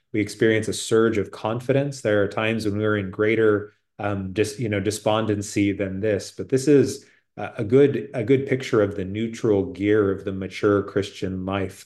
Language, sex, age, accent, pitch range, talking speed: English, male, 30-49, American, 95-110 Hz, 190 wpm